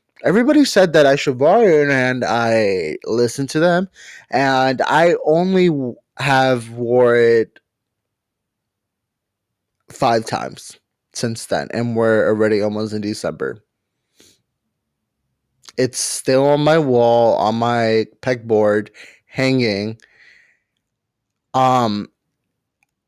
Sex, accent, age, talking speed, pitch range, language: male, American, 20-39, 100 wpm, 120-145 Hz, English